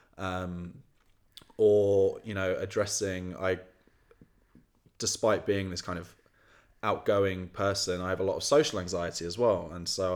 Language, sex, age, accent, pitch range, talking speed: English, male, 20-39, British, 90-100 Hz, 140 wpm